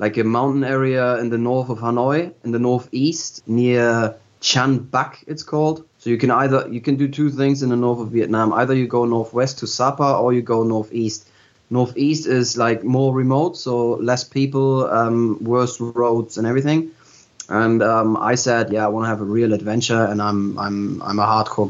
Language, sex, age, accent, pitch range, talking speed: English, male, 20-39, German, 110-130 Hz, 200 wpm